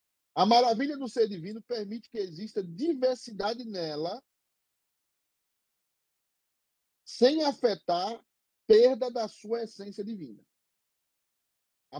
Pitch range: 175-240 Hz